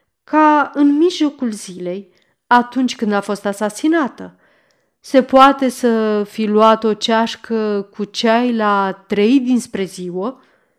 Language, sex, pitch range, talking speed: Romanian, female, 200-270 Hz, 120 wpm